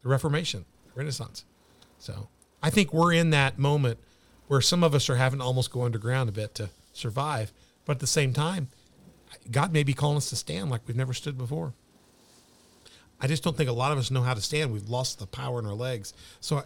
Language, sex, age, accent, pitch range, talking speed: English, male, 40-59, American, 120-150 Hz, 225 wpm